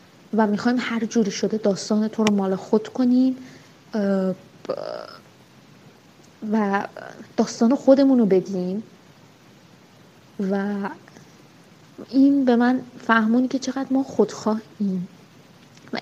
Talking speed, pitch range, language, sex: 95 wpm, 200-240 Hz, Persian, female